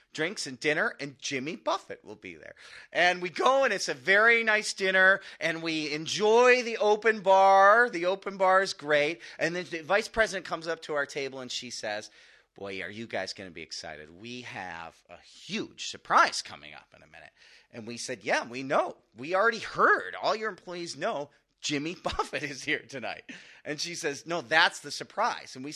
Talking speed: 205 wpm